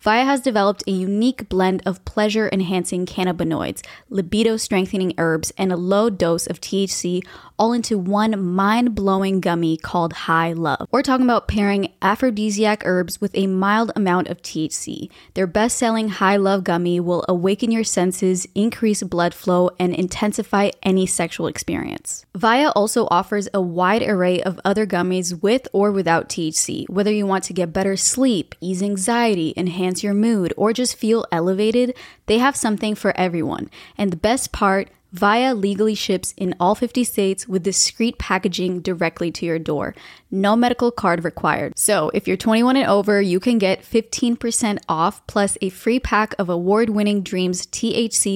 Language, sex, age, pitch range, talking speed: English, female, 20-39, 180-215 Hz, 160 wpm